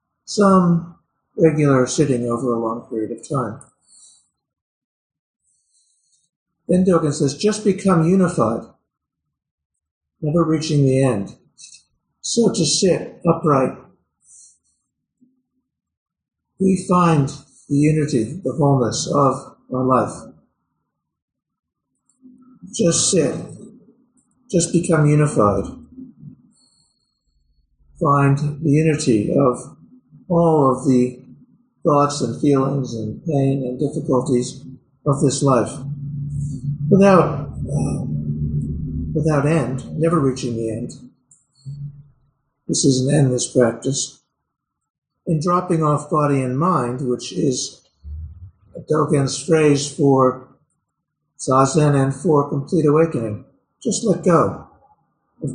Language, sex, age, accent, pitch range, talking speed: English, male, 50-69, American, 130-165 Hz, 95 wpm